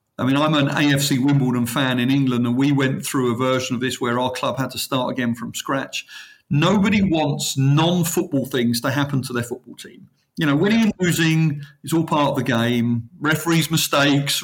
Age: 40-59